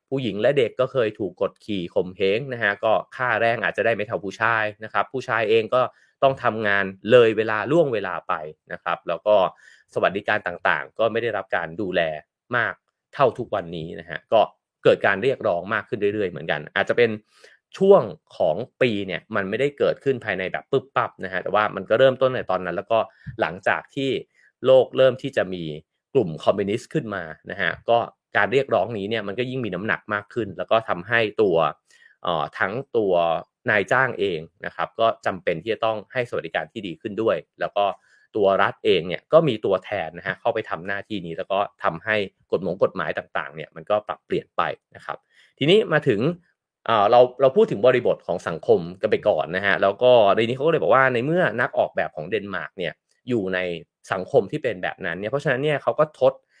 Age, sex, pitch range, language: 30-49, male, 100-140 Hz, English